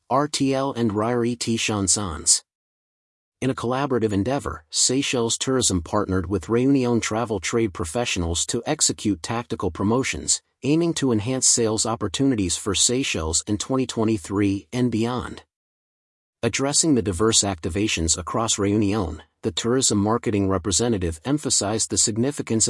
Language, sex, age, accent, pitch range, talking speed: English, male, 40-59, American, 100-125 Hz, 120 wpm